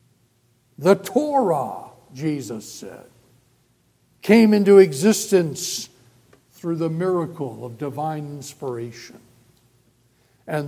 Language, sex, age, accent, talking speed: English, male, 60-79, American, 80 wpm